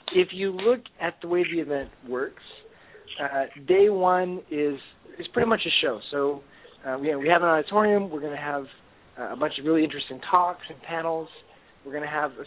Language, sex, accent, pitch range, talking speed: English, male, American, 140-170 Hz, 195 wpm